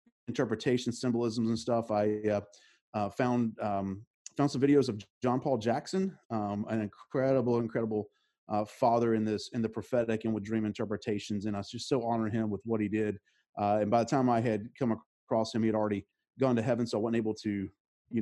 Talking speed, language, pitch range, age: 210 wpm, English, 110-130 Hz, 30-49